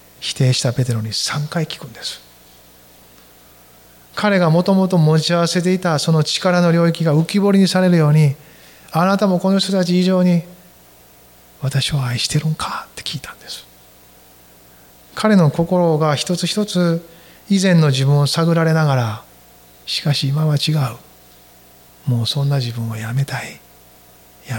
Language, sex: Japanese, male